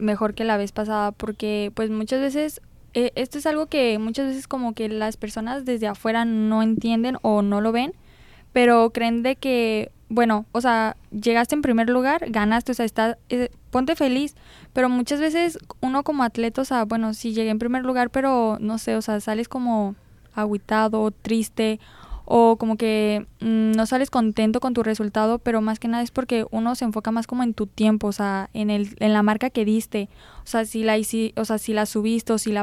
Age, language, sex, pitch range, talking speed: 10-29, Spanish, female, 215-240 Hz, 210 wpm